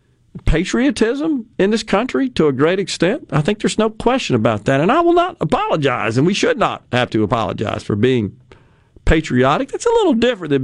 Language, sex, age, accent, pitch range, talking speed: English, male, 50-69, American, 135-215 Hz, 195 wpm